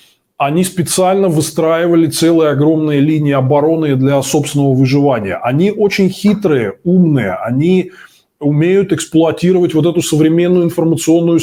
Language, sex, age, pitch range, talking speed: Russian, male, 20-39, 140-175 Hz, 110 wpm